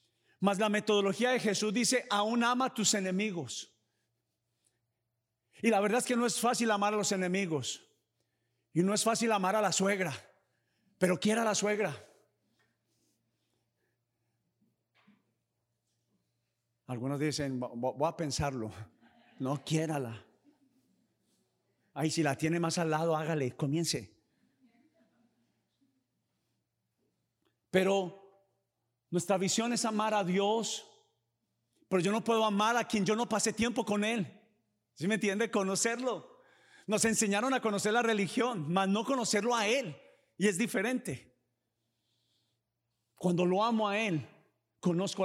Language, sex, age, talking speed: Spanish, male, 50-69, 125 wpm